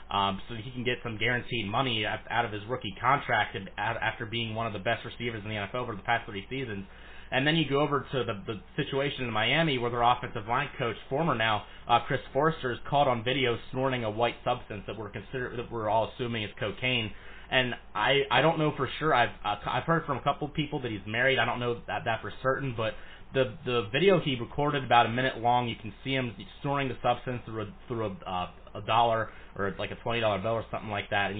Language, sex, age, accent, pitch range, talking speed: English, male, 30-49, American, 110-135 Hz, 240 wpm